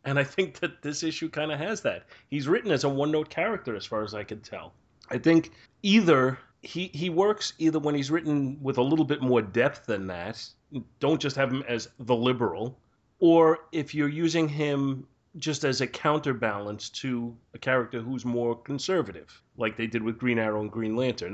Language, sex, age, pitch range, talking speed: English, male, 30-49, 110-135 Hz, 200 wpm